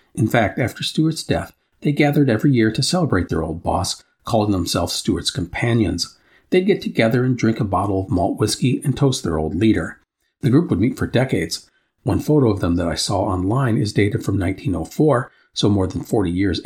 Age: 40-59